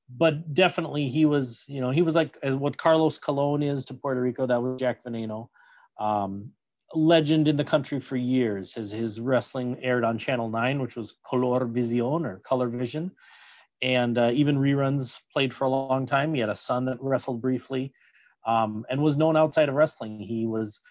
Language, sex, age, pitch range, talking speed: English, male, 30-49, 120-150 Hz, 190 wpm